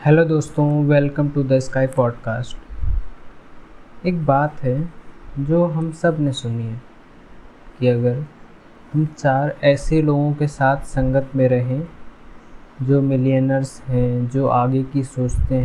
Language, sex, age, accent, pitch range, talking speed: Hindi, male, 20-39, native, 130-150 Hz, 130 wpm